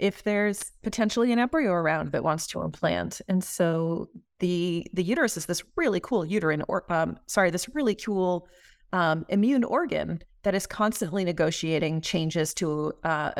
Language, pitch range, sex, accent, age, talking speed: English, 165-205 Hz, female, American, 30-49, 160 wpm